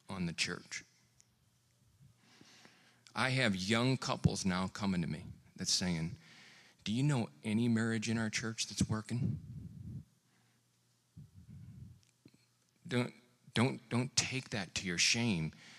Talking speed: 120 wpm